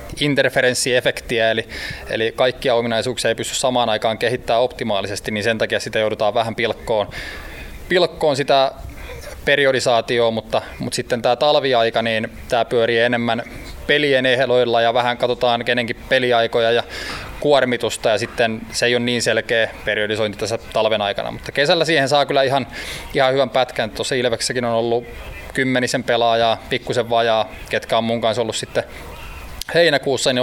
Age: 20-39